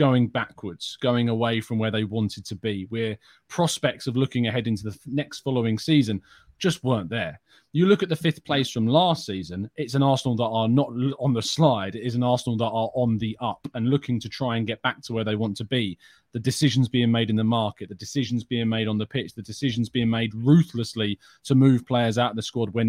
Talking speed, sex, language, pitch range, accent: 235 wpm, male, English, 110-135 Hz, British